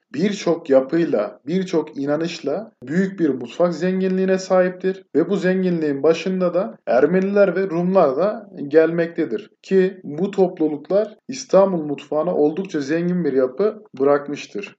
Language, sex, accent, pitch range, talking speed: Turkish, male, native, 145-190 Hz, 120 wpm